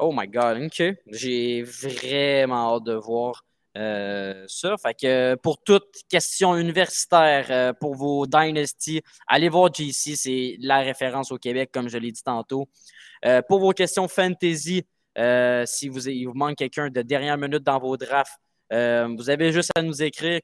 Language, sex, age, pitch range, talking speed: French, male, 20-39, 130-165 Hz, 175 wpm